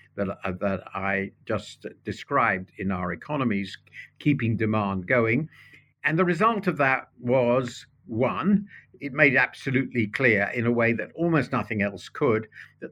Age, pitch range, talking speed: 50-69, 105-140 Hz, 140 wpm